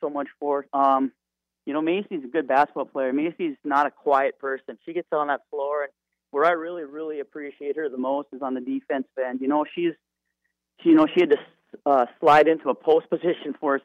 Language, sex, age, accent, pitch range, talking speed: English, male, 30-49, American, 135-150 Hz, 220 wpm